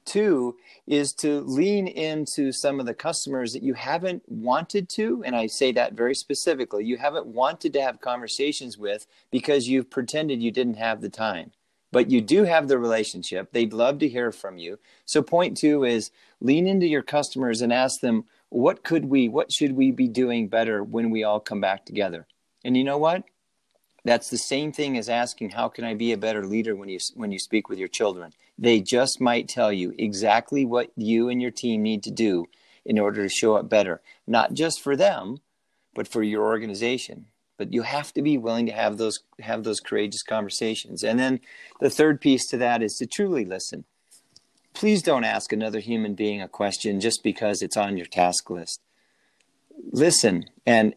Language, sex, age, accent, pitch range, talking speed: English, male, 40-59, American, 110-140 Hz, 200 wpm